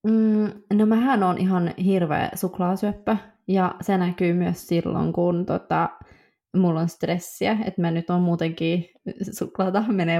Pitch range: 170-215 Hz